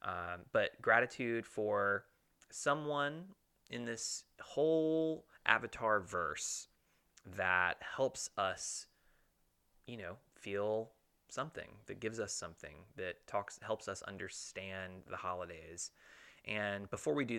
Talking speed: 110 wpm